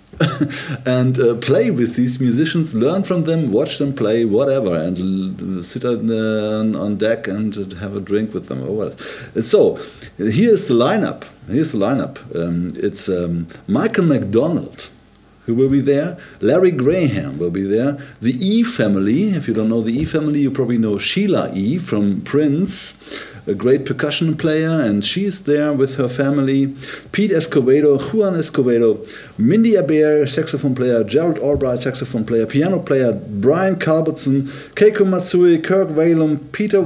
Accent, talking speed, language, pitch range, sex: German, 160 wpm, German, 120-180 Hz, male